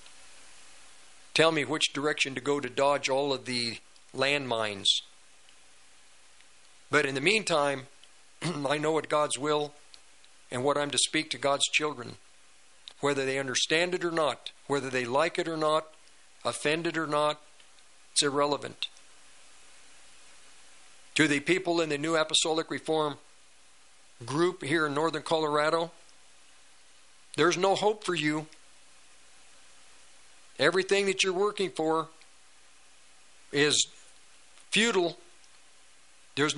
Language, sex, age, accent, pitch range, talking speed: English, male, 50-69, American, 140-175 Hz, 120 wpm